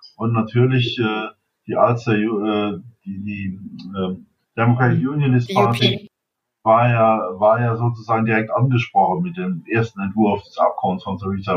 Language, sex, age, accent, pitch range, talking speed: German, male, 50-69, German, 110-125 Hz, 110 wpm